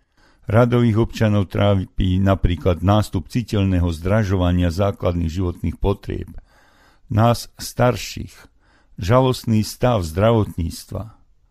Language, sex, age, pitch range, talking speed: Slovak, male, 50-69, 90-110 Hz, 80 wpm